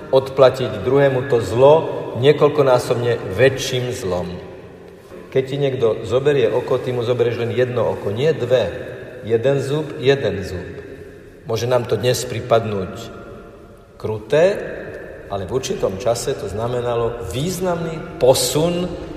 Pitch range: 105-150 Hz